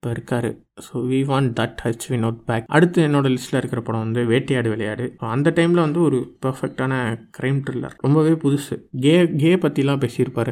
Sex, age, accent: male, 20-39, native